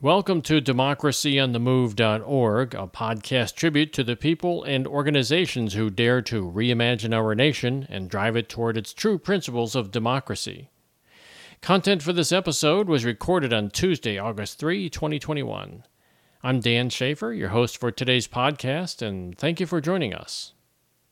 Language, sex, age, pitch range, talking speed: English, male, 50-69, 120-165 Hz, 145 wpm